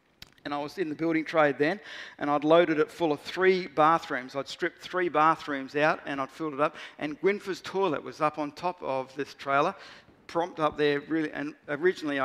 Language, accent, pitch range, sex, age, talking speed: English, Australian, 150-190 Hz, male, 50-69, 205 wpm